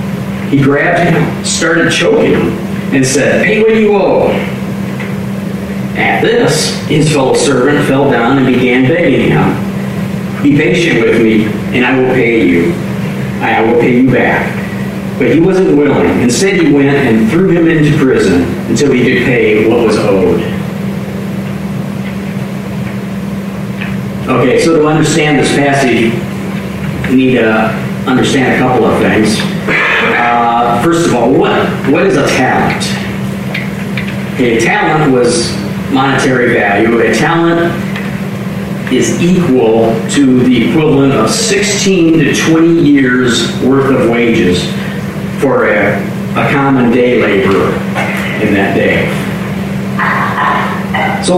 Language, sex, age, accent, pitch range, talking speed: English, male, 50-69, American, 125-180 Hz, 125 wpm